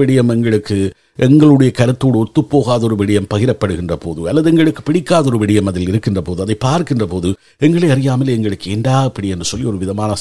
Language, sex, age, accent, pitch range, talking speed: Tamil, male, 50-69, native, 100-135 Hz, 165 wpm